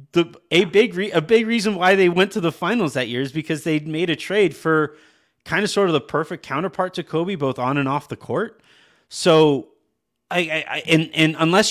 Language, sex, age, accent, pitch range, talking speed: English, male, 30-49, American, 130-160 Hz, 225 wpm